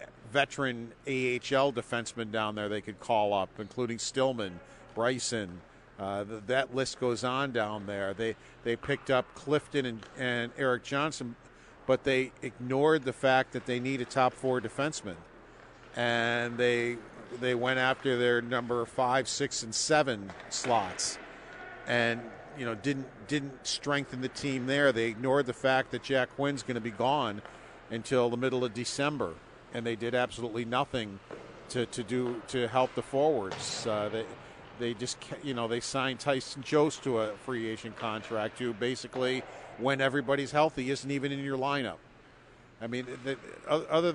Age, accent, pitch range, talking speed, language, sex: 50-69, American, 120-140 Hz, 160 wpm, English, male